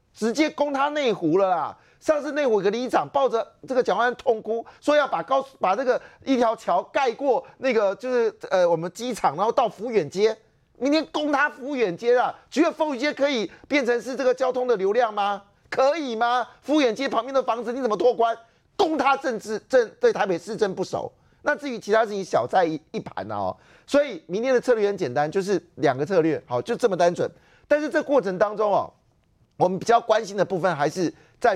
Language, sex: Chinese, male